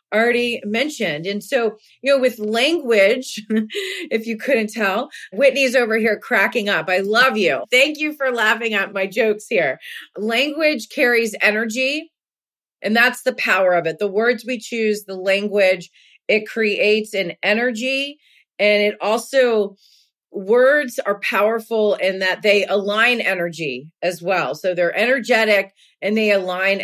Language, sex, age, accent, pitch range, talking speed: English, female, 30-49, American, 195-250 Hz, 150 wpm